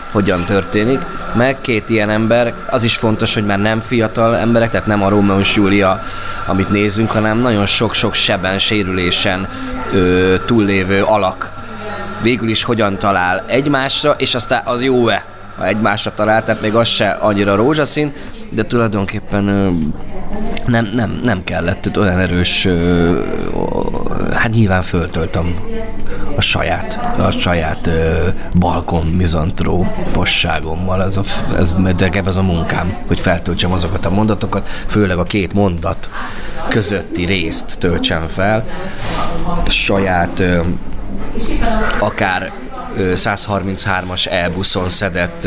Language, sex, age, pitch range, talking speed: Hungarian, male, 20-39, 90-110 Hz, 130 wpm